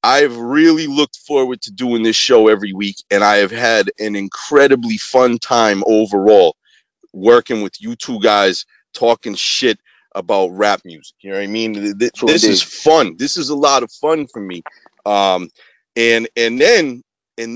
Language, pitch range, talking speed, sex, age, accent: English, 115-190 Hz, 175 wpm, male, 30-49, American